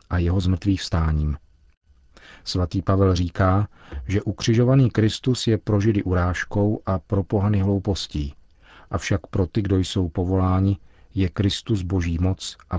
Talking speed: 135 wpm